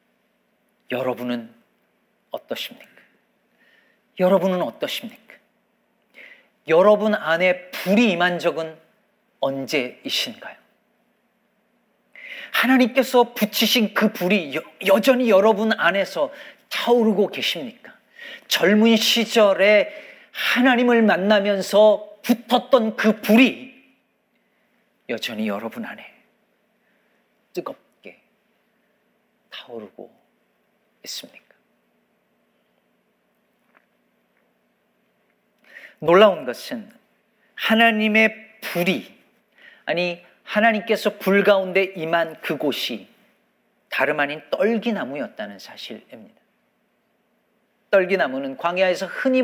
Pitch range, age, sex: 180-230 Hz, 40-59, male